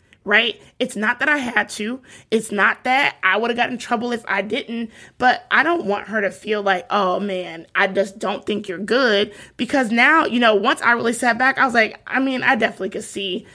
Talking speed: 235 wpm